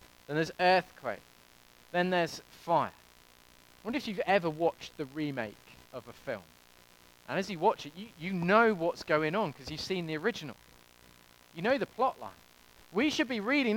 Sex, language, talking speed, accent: male, English, 185 wpm, British